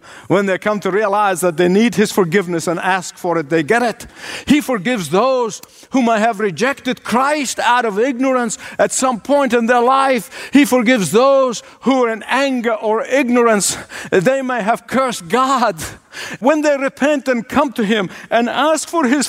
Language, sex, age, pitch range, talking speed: English, male, 50-69, 185-260 Hz, 185 wpm